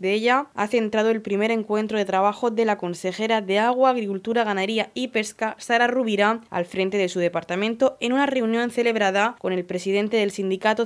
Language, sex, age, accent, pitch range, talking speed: Spanish, female, 20-39, Spanish, 195-240 Hz, 190 wpm